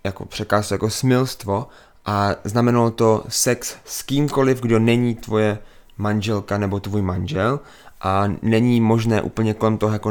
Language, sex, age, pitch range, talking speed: English, male, 20-39, 100-115 Hz, 140 wpm